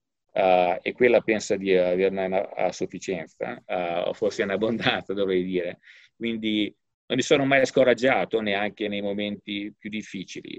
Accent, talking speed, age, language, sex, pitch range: native, 145 wpm, 40-59, Italian, male, 105-140 Hz